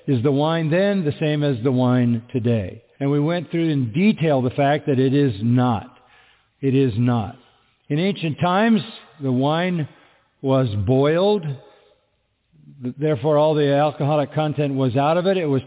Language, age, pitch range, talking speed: English, 50-69, 135-160 Hz, 165 wpm